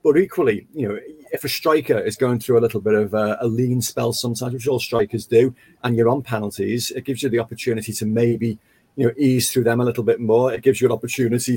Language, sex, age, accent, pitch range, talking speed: English, male, 40-59, British, 110-135 Hz, 250 wpm